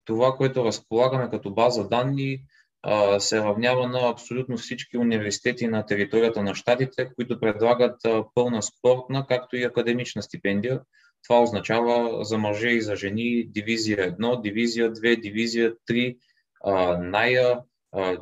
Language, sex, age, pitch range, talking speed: English, male, 20-39, 105-125 Hz, 125 wpm